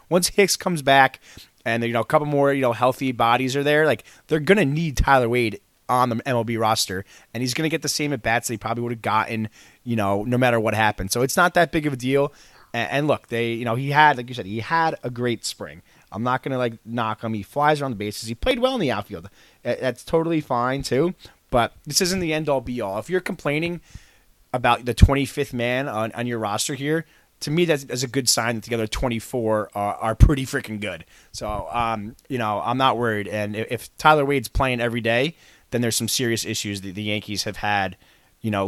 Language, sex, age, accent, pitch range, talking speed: English, male, 20-39, American, 110-140 Hz, 235 wpm